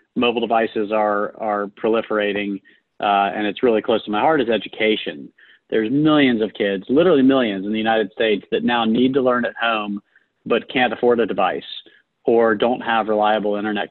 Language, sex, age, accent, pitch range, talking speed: English, male, 30-49, American, 100-115 Hz, 180 wpm